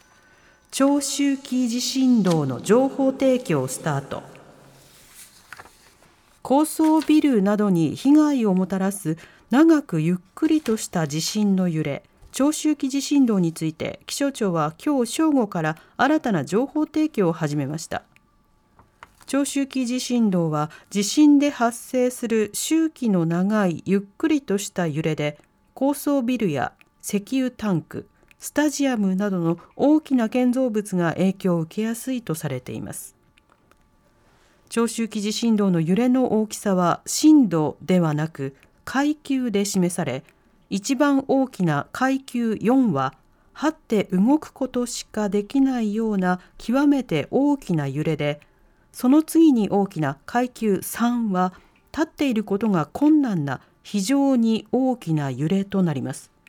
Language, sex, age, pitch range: Japanese, female, 40-59, 175-270 Hz